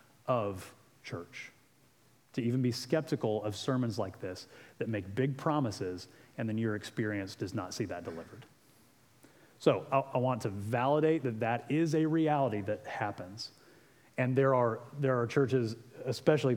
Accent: American